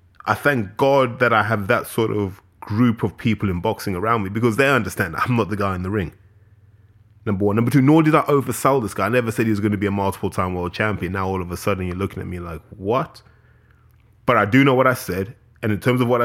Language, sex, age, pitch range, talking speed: English, male, 20-39, 105-120 Hz, 260 wpm